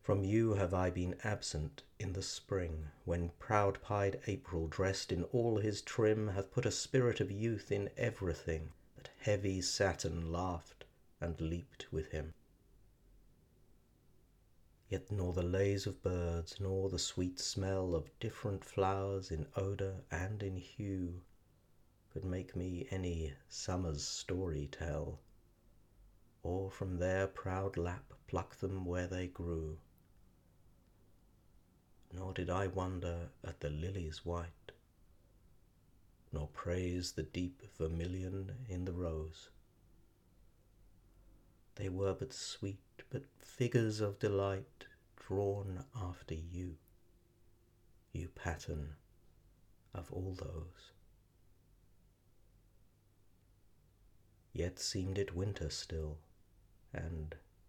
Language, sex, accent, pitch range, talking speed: English, male, British, 85-100 Hz, 110 wpm